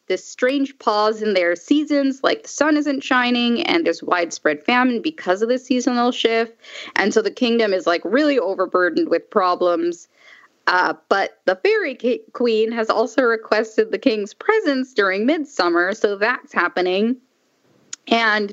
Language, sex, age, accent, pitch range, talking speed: English, female, 10-29, American, 195-285 Hz, 150 wpm